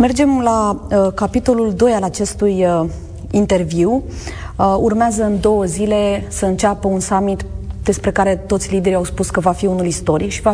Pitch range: 175-220 Hz